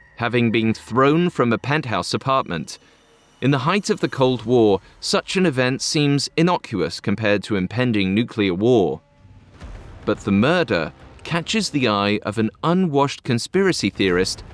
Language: English